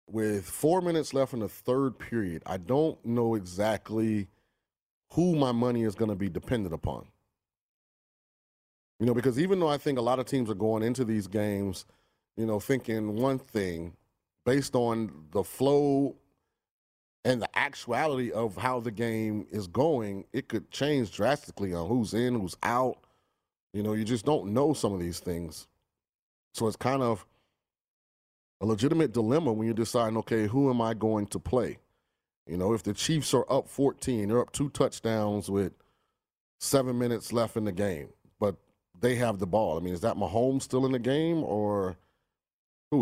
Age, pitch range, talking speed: 30-49, 100-130 Hz, 175 wpm